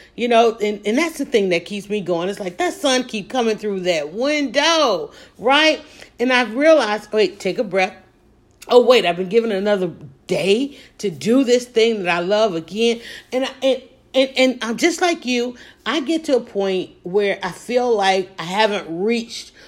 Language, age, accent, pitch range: English, 40-59, American, 195-255 Hz